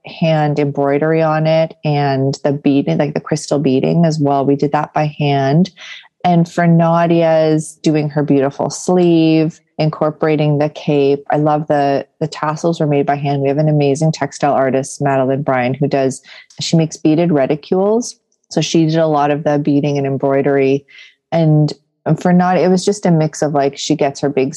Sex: female